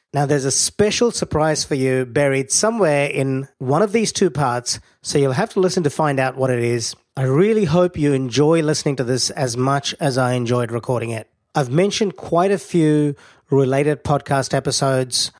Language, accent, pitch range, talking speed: English, Australian, 130-155 Hz, 190 wpm